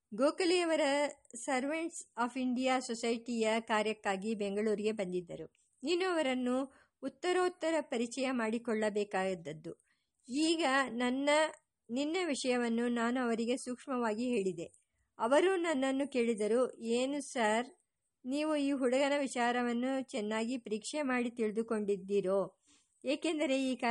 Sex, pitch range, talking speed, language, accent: male, 215-275 Hz, 100 wpm, English, Indian